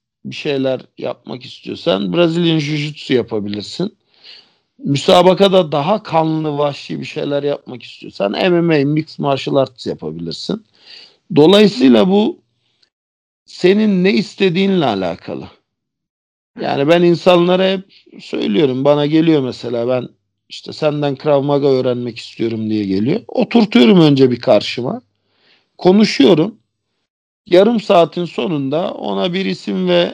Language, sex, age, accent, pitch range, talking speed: Turkish, male, 50-69, native, 120-180 Hz, 110 wpm